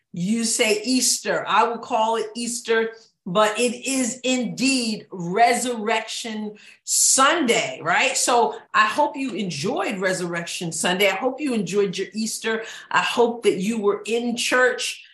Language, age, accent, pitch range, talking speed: English, 40-59, American, 200-235 Hz, 140 wpm